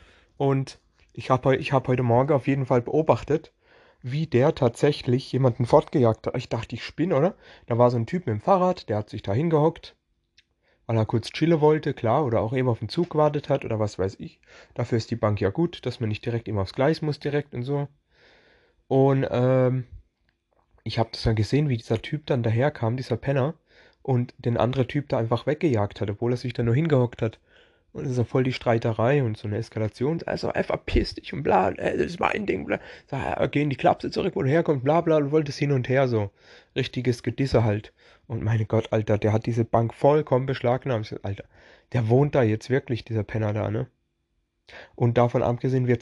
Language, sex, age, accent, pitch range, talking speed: German, male, 30-49, German, 110-140 Hz, 215 wpm